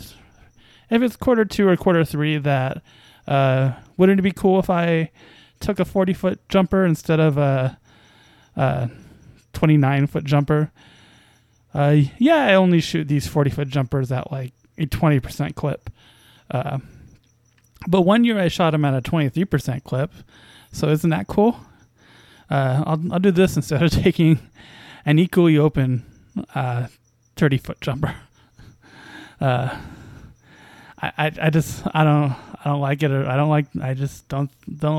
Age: 20-39